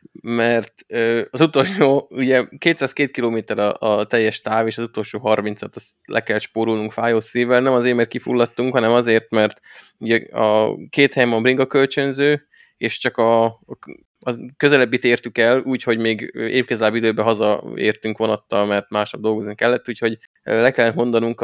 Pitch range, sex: 110-125 Hz, male